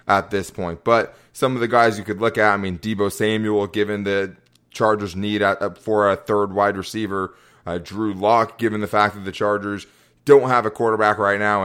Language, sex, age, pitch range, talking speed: English, male, 20-39, 95-110 Hz, 205 wpm